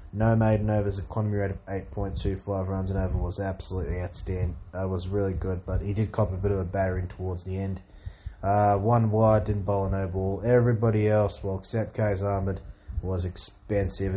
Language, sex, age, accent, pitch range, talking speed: English, male, 20-39, Australian, 95-105 Hz, 185 wpm